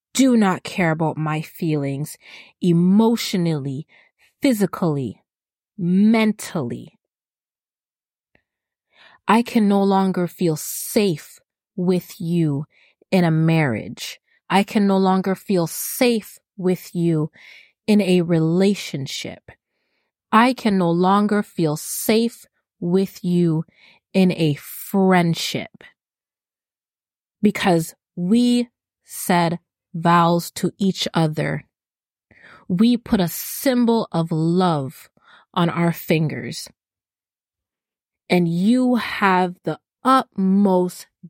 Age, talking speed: 30-49, 90 wpm